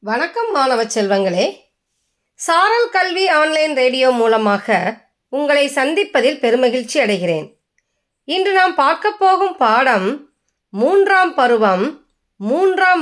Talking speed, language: 90 wpm, Tamil